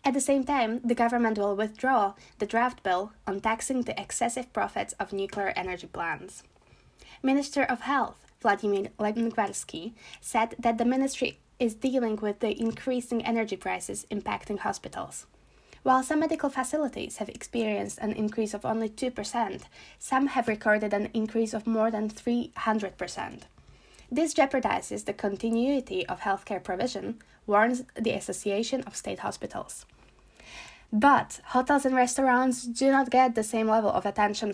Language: Slovak